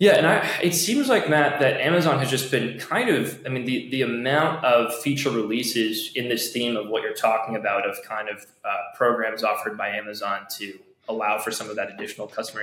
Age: 20-39